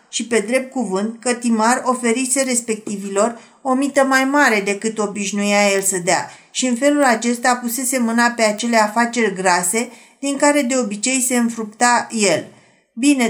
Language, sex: Romanian, female